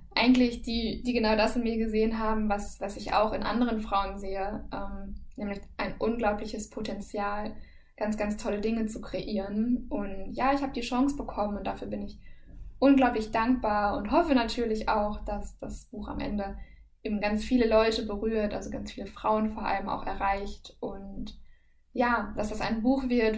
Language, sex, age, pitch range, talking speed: German, female, 10-29, 200-230 Hz, 180 wpm